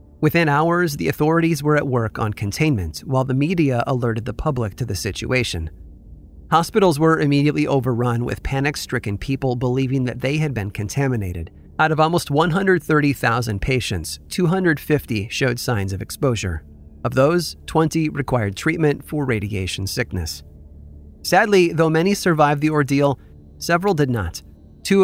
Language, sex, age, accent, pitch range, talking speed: English, male, 30-49, American, 105-150 Hz, 140 wpm